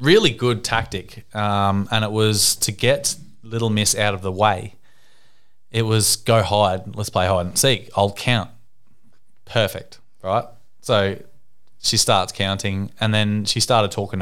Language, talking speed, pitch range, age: English, 155 wpm, 105-125 Hz, 20-39